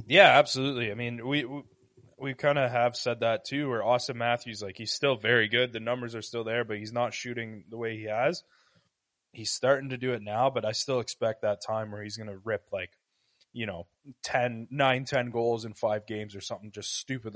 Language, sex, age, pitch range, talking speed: English, male, 20-39, 115-135 Hz, 225 wpm